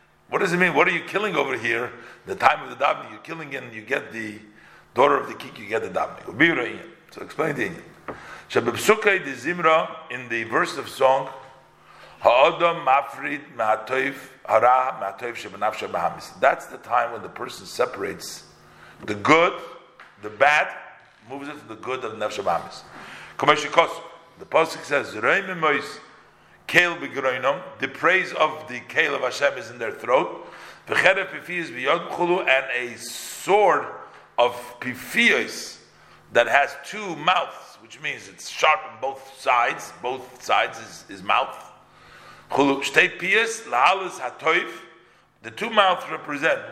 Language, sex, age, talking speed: English, male, 50-69, 130 wpm